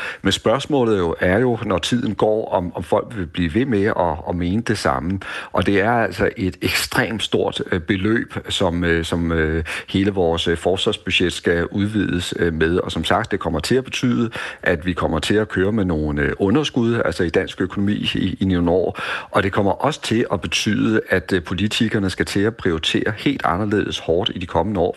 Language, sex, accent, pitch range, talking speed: Danish, male, native, 85-105 Hz, 210 wpm